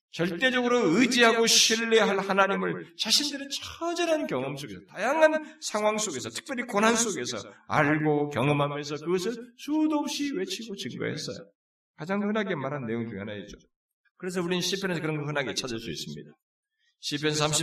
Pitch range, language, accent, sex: 150-240 Hz, Korean, native, male